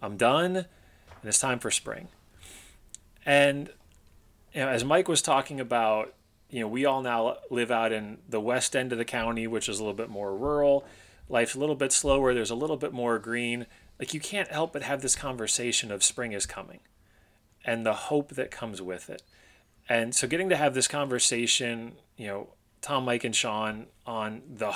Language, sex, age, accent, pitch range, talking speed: English, male, 30-49, American, 105-135 Hz, 195 wpm